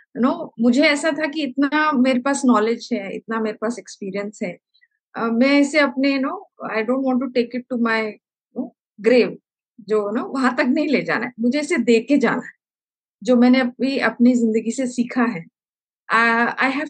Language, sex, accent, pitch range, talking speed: Hindi, female, native, 215-260 Hz, 190 wpm